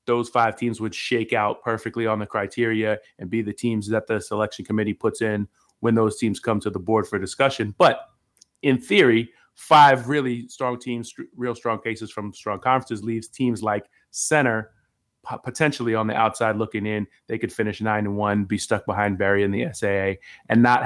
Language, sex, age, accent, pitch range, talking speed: English, male, 30-49, American, 105-125 Hz, 195 wpm